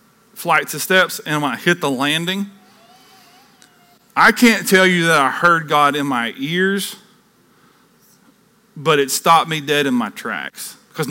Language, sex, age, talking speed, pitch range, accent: English, male, 40-59, 155 wpm, 140-215 Hz, American